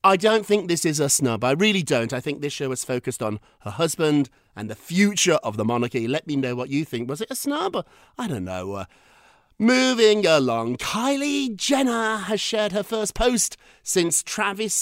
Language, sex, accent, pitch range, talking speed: English, male, British, 130-205 Hz, 205 wpm